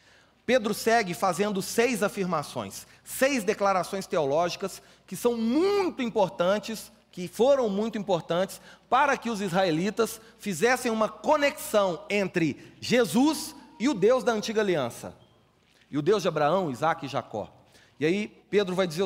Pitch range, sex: 165-225 Hz, male